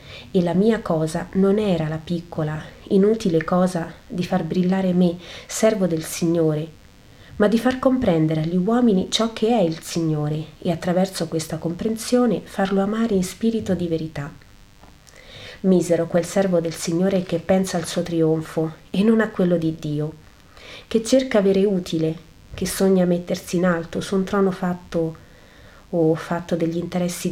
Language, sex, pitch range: Italian, female, 160-195 Hz